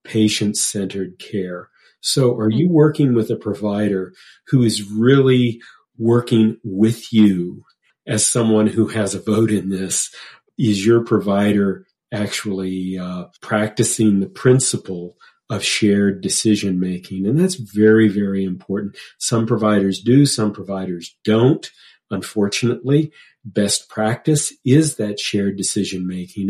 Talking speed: 120 wpm